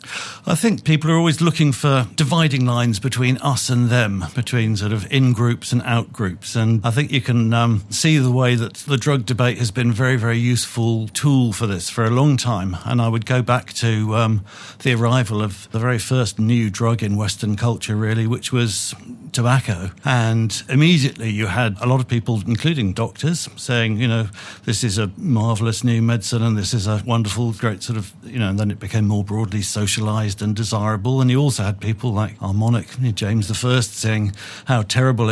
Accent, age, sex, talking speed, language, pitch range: British, 50-69, male, 200 wpm, English, 110-135 Hz